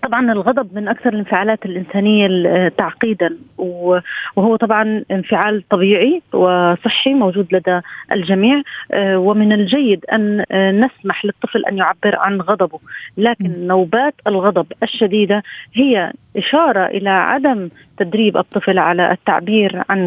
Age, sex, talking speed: 30-49, female, 110 wpm